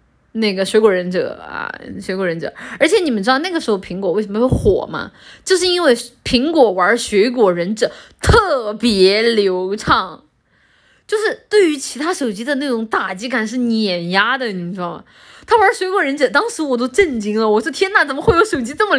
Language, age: Chinese, 20-39